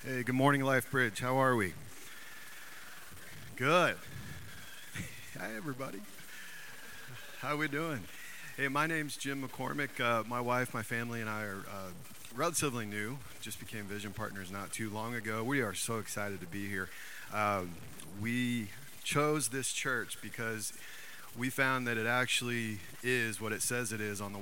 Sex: male